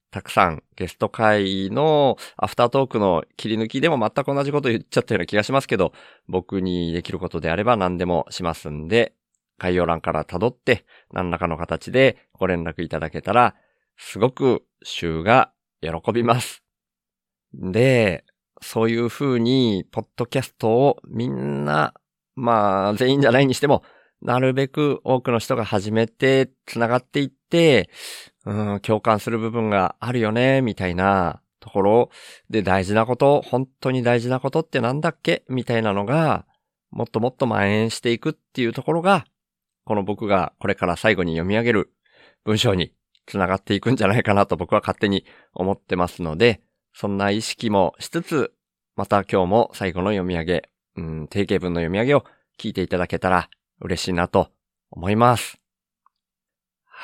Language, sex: Japanese, male